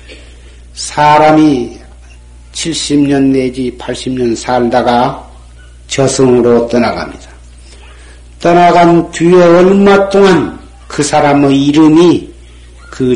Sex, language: male, Korean